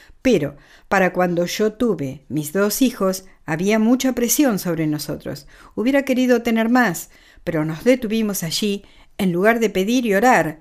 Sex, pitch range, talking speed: female, 175-215 Hz, 155 wpm